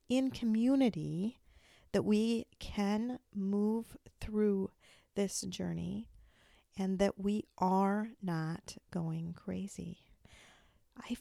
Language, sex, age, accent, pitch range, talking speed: English, female, 40-59, American, 180-210 Hz, 90 wpm